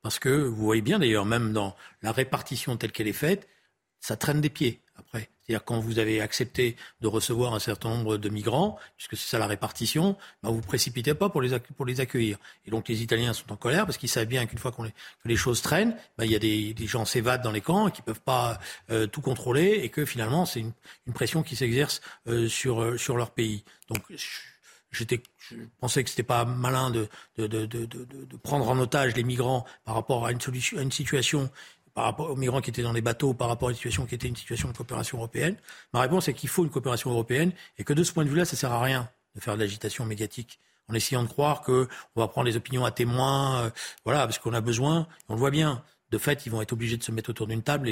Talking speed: 255 wpm